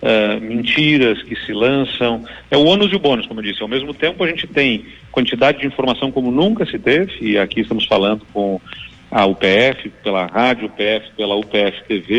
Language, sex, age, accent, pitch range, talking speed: Portuguese, male, 40-59, Brazilian, 105-130 Hz, 195 wpm